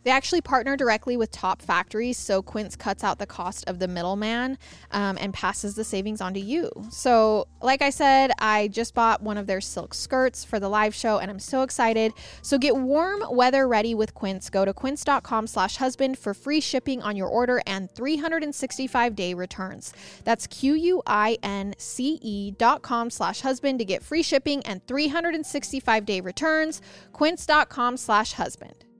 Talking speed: 170 wpm